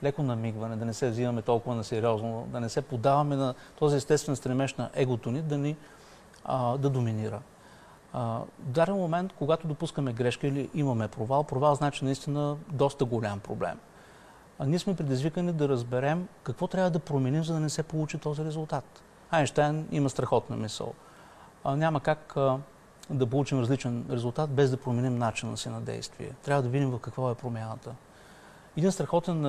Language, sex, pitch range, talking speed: Bulgarian, male, 125-155 Hz, 175 wpm